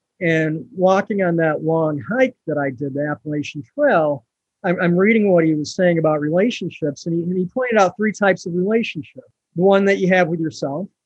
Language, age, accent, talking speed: English, 50-69, American, 205 wpm